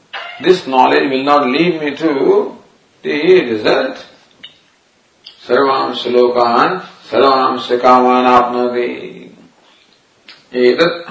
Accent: Indian